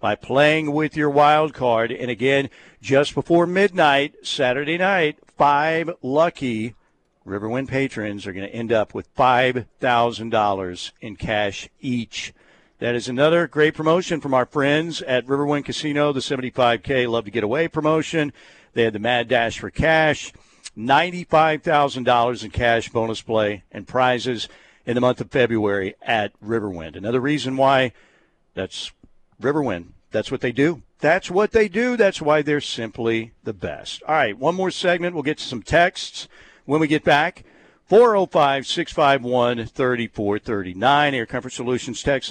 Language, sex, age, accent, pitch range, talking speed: English, male, 50-69, American, 115-150 Hz, 145 wpm